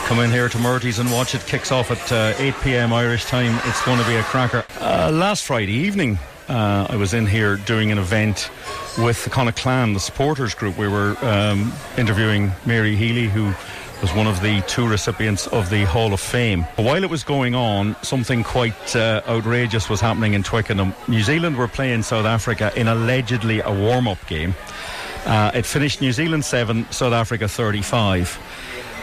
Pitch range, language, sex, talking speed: 105-125 Hz, English, male, 190 wpm